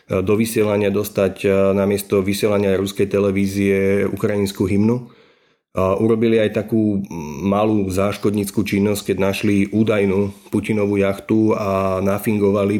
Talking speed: 105 wpm